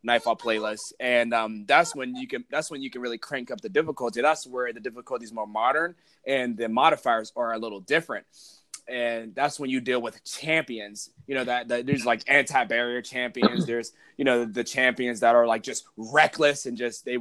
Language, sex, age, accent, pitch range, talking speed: English, male, 20-39, American, 120-160 Hz, 205 wpm